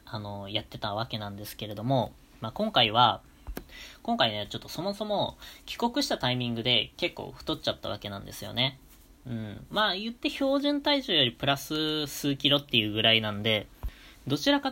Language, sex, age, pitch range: Japanese, female, 20-39, 110-145 Hz